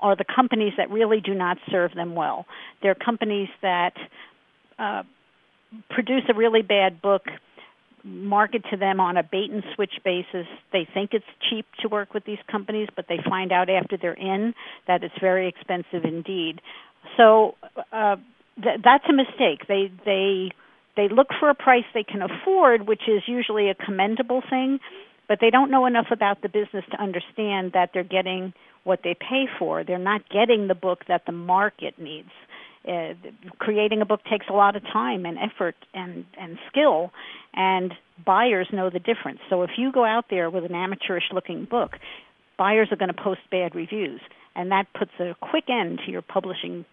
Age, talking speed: 50-69, 175 wpm